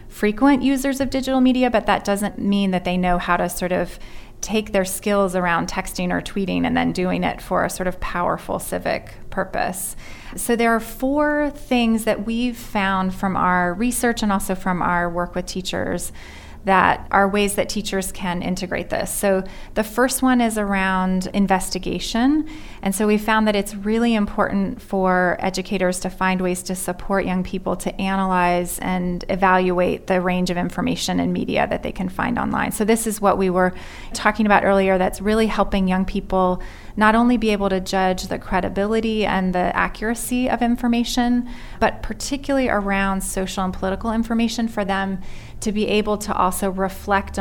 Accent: American